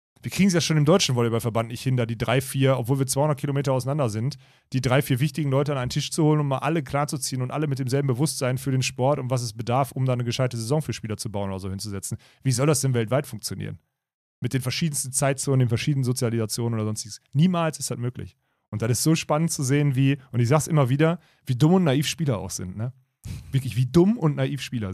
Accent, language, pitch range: German, German, 125-155 Hz